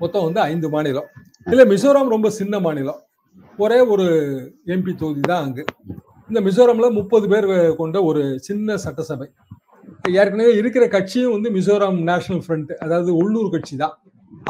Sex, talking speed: male, 140 wpm